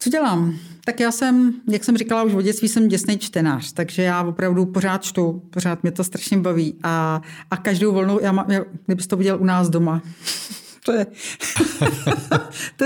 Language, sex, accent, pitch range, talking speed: Czech, female, native, 180-235 Hz, 175 wpm